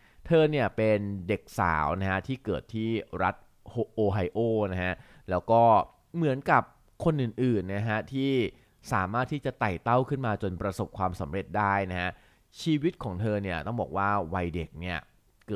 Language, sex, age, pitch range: Thai, male, 20-39, 90-115 Hz